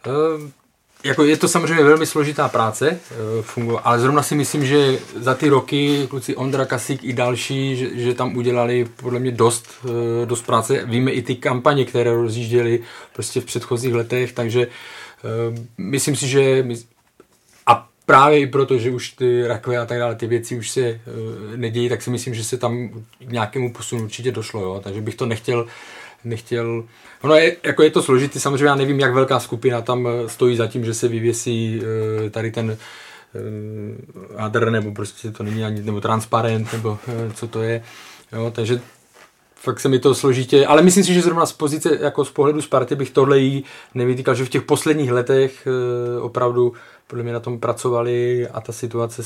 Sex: male